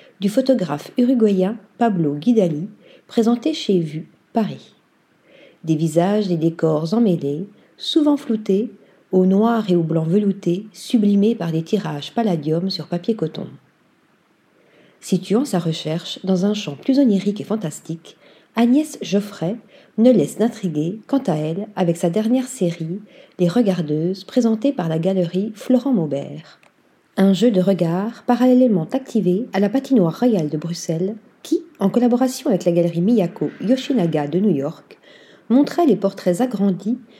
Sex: female